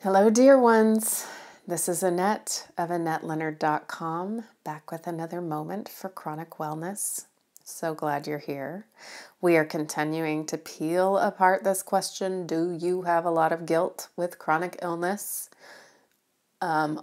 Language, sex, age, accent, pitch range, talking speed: English, female, 30-49, American, 155-195 Hz, 135 wpm